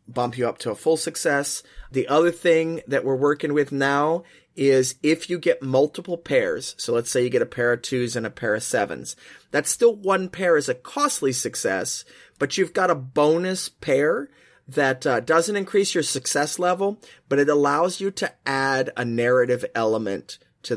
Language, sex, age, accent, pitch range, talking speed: English, male, 30-49, American, 125-165 Hz, 190 wpm